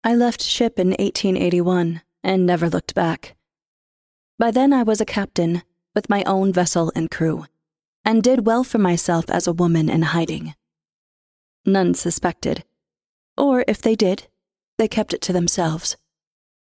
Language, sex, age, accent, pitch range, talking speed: English, female, 20-39, American, 165-195 Hz, 150 wpm